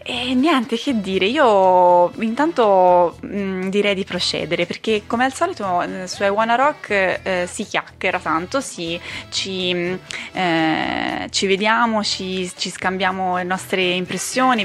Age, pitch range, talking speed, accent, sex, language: 20-39, 175-215 Hz, 130 wpm, native, female, Italian